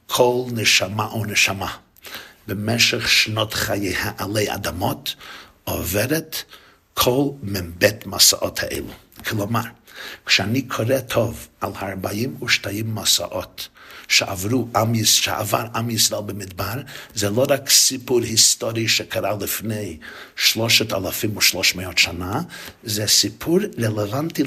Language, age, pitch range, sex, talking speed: Hebrew, 60-79, 105-125 Hz, male, 100 wpm